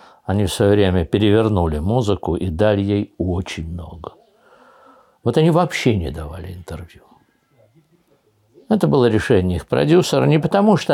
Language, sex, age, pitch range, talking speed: Russian, male, 60-79, 95-150 Hz, 135 wpm